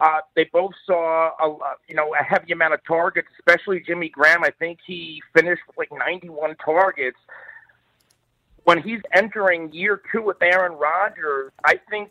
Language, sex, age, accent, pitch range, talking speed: English, male, 40-59, American, 155-195 Hz, 155 wpm